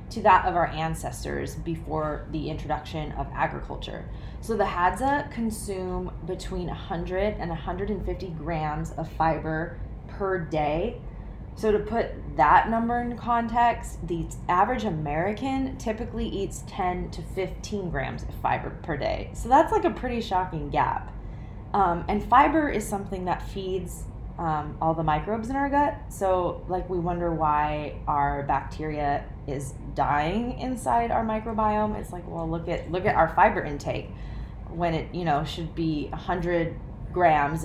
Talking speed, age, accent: 150 wpm, 20-39, American